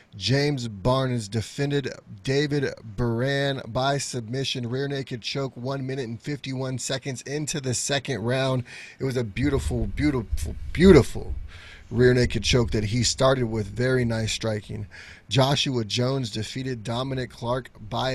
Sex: male